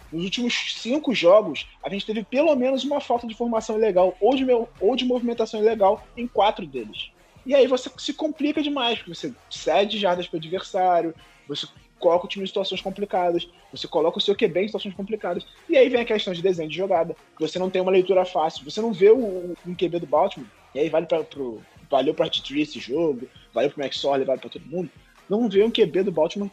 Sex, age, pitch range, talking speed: male, 20-39, 175-225 Hz, 225 wpm